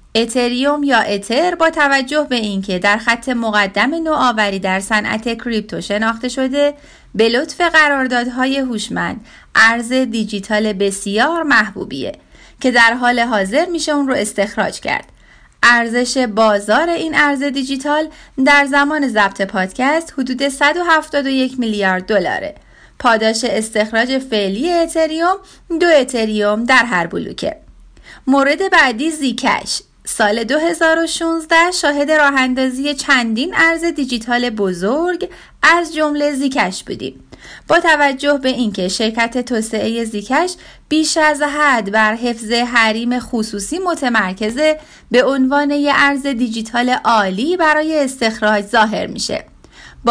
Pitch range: 220-295 Hz